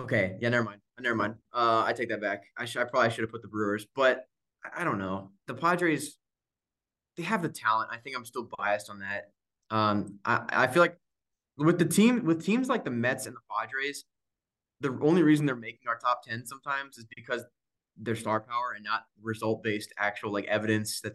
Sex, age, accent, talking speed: male, 20-39, American, 210 wpm